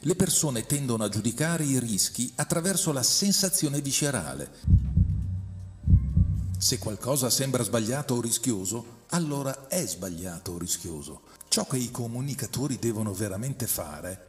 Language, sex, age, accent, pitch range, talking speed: Italian, male, 50-69, native, 105-150 Hz, 120 wpm